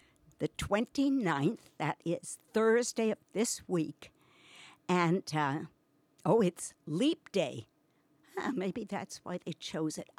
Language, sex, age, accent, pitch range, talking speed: English, female, 60-79, American, 155-215 Hz, 120 wpm